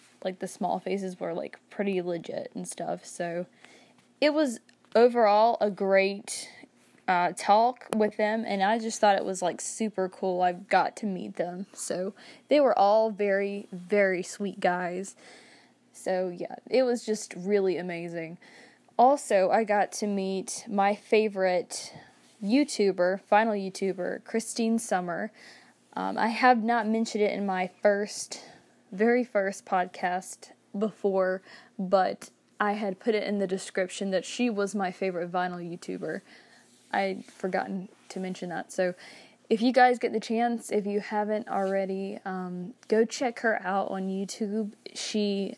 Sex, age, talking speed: female, 10-29, 150 wpm